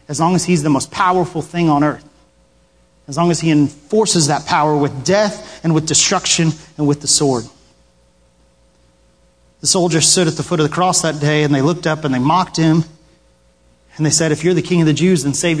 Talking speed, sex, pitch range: 220 wpm, male, 140-200 Hz